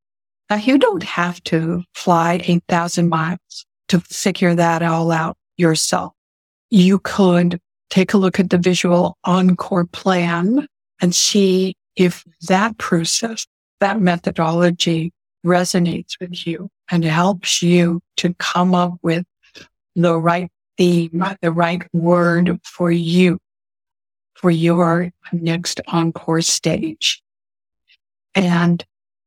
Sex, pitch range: female, 170-190 Hz